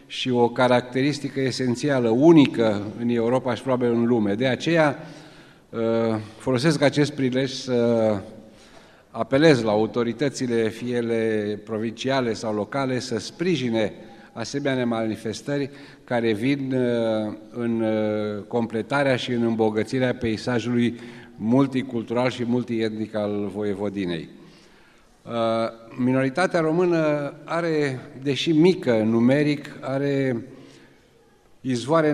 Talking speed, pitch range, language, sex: 90 wpm, 115-135 Hz, Romanian, male